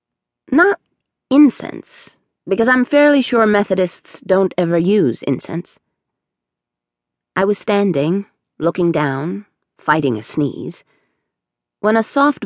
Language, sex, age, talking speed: English, female, 40-59, 105 wpm